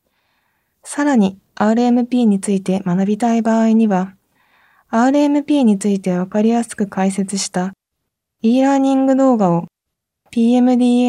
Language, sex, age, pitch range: Japanese, female, 20-39, 195-255 Hz